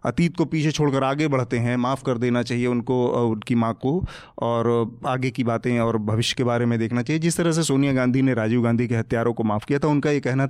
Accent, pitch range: native, 120-165 Hz